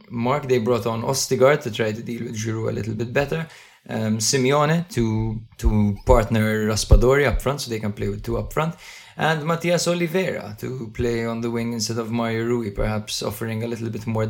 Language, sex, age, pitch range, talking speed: English, male, 20-39, 105-120 Hz, 205 wpm